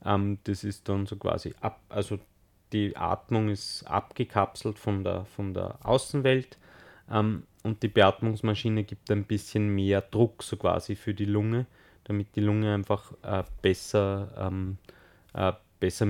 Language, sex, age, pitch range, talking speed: German, male, 30-49, 95-105 Hz, 150 wpm